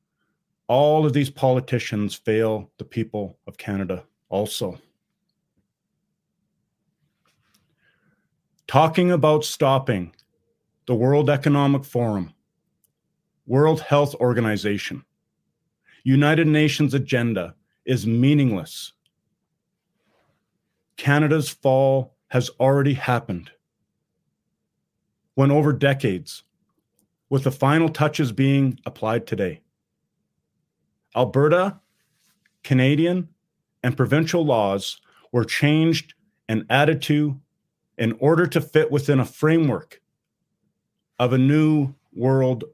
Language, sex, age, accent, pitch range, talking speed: English, male, 40-59, American, 125-155 Hz, 85 wpm